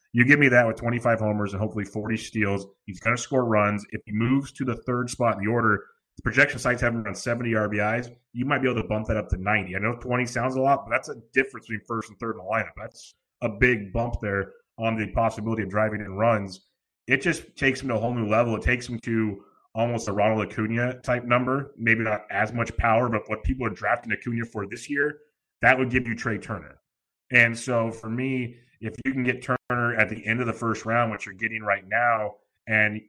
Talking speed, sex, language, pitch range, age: 245 wpm, male, English, 105-120 Hz, 30-49